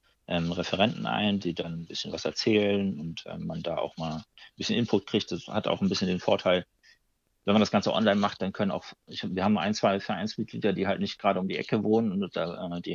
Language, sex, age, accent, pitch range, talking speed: German, male, 40-59, German, 90-110 Hz, 240 wpm